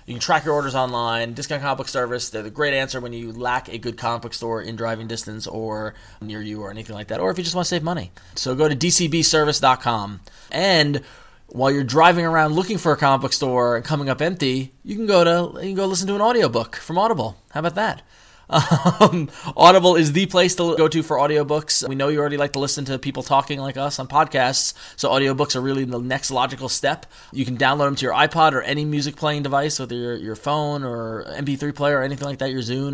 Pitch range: 120-155 Hz